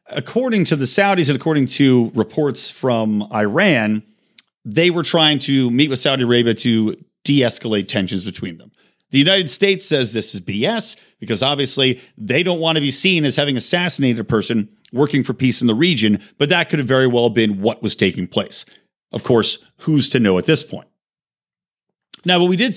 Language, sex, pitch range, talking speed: English, male, 120-185 Hz, 190 wpm